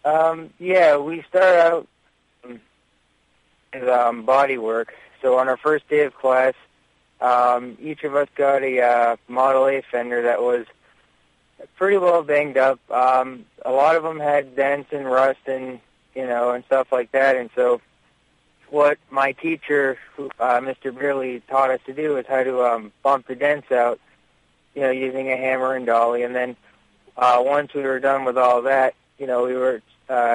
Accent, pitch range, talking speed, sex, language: American, 115-135 Hz, 180 wpm, male, English